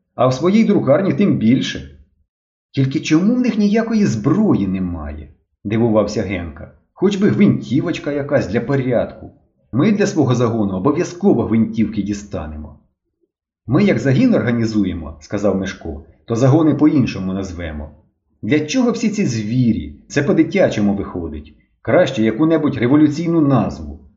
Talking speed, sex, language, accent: 125 wpm, male, Ukrainian, native